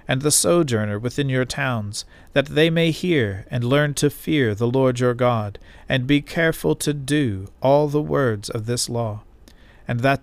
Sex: male